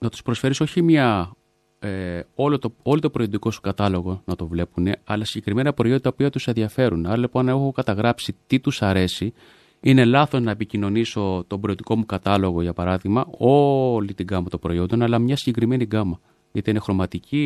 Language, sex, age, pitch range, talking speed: Greek, male, 30-49, 95-125 Hz, 180 wpm